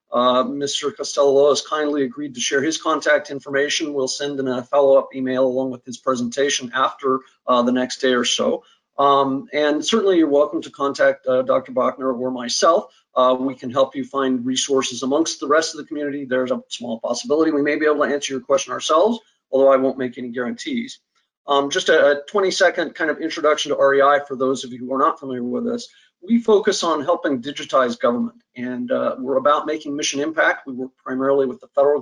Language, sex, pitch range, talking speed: English, male, 130-155 Hz, 205 wpm